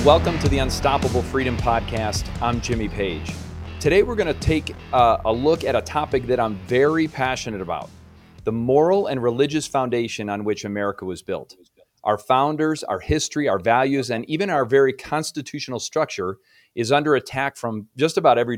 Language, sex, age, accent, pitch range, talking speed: English, male, 40-59, American, 110-145 Hz, 170 wpm